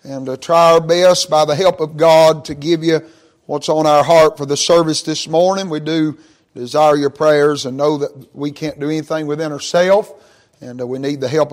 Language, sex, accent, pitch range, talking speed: English, male, American, 155-210 Hz, 215 wpm